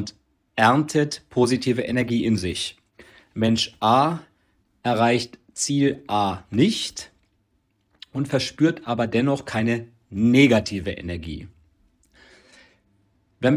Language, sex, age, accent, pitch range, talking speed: German, male, 40-59, German, 100-140 Hz, 85 wpm